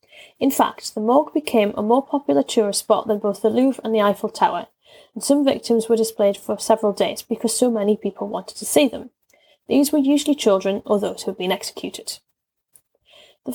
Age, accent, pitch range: 10-29, British, 210-275 Hz